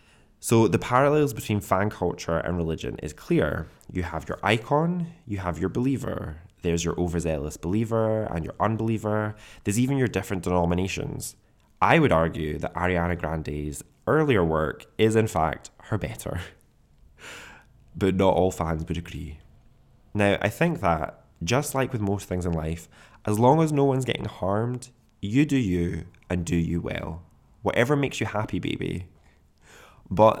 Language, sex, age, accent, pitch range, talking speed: English, male, 20-39, British, 85-110 Hz, 160 wpm